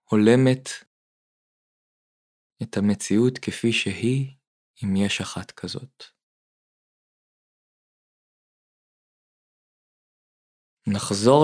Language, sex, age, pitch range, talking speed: Hebrew, male, 20-39, 100-130 Hz, 50 wpm